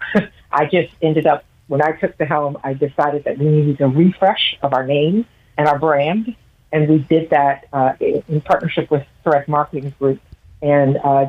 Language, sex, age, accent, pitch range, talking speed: English, female, 50-69, American, 135-160 Hz, 185 wpm